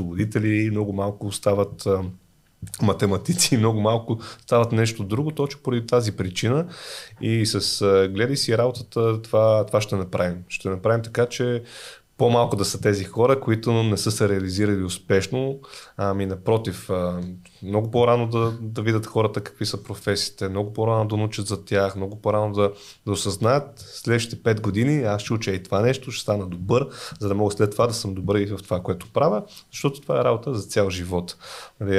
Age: 30-49